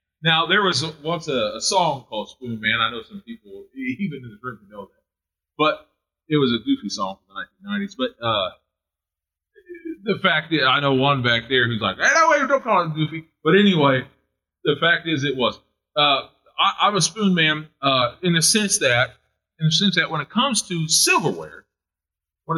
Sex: male